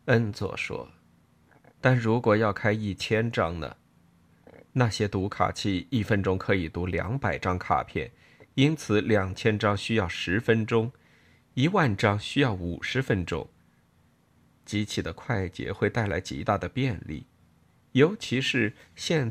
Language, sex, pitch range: Chinese, male, 90-125 Hz